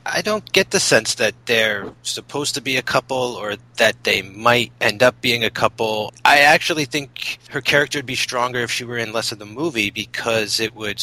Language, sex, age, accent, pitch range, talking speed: English, male, 30-49, American, 115-145 Hz, 220 wpm